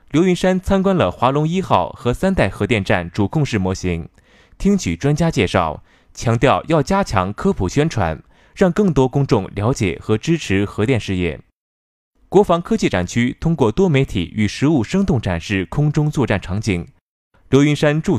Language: Chinese